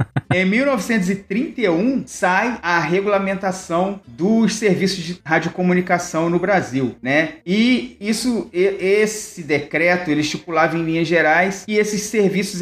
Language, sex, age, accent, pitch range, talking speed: Portuguese, male, 40-59, Brazilian, 145-195 Hz, 110 wpm